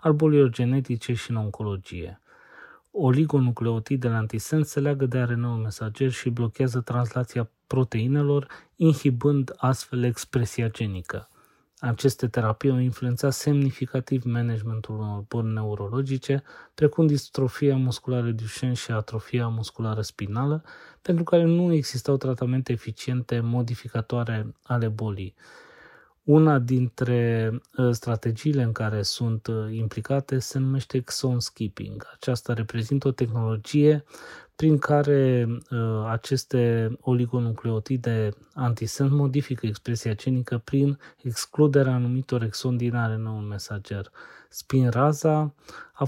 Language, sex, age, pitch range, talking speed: Romanian, male, 20-39, 115-135 Hz, 105 wpm